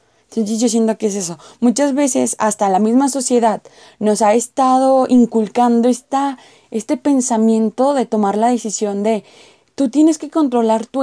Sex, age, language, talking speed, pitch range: female, 20-39, English, 160 wpm, 210-260 Hz